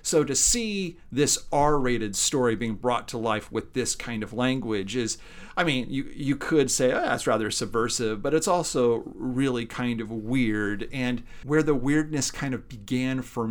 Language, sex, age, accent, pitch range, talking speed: English, male, 40-59, American, 115-145 Hz, 180 wpm